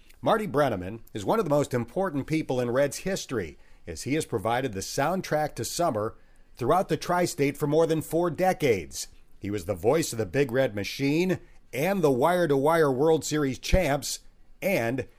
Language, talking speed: English, 175 wpm